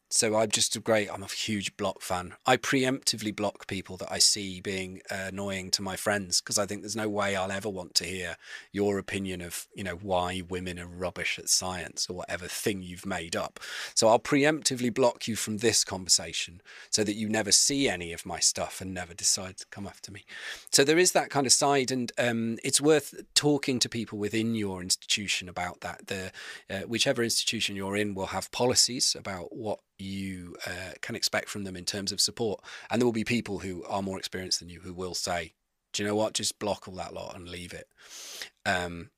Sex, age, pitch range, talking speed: male, 30-49, 95-115 Hz, 215 wpm